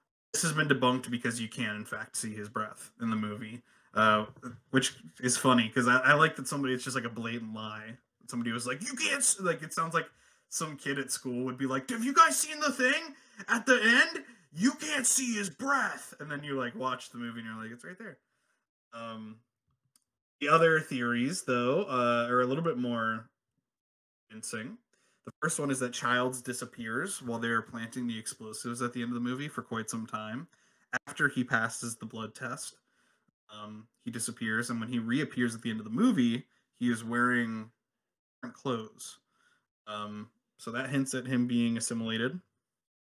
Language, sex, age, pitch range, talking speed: English, male, 20-39, 115-140 Hz, 195 wpm